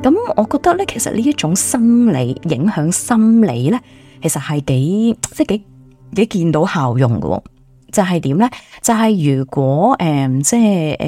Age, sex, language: 20-39, female, Chinese